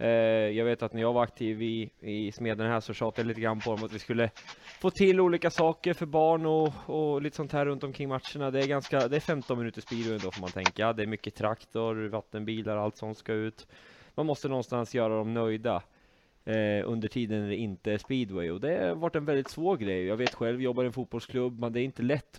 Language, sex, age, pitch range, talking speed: Swedish, male, 20-39, 110-135 Hz, 240 wpm